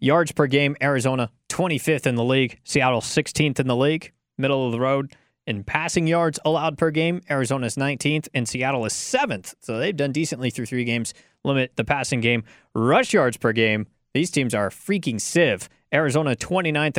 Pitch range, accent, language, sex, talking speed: 115-150 Hz, American, English, male, 185 wpm